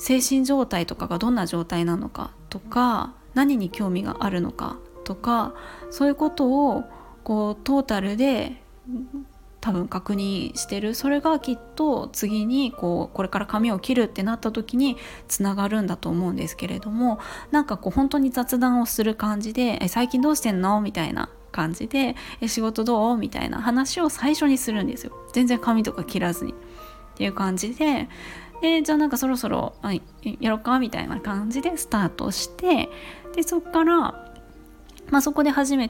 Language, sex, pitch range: Japanese, female, 210-275 Hz